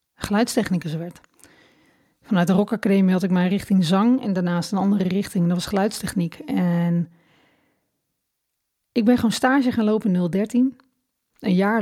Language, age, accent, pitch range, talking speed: Dutch, 40-59, Dutch, 180-225 Hz, 140 wpm